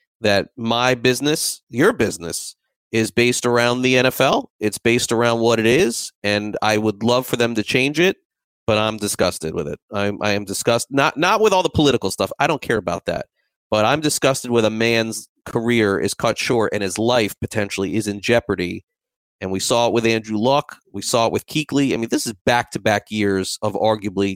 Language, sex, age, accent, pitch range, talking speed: English, male, 30-49, American, 100-125 Hz, 210 wpm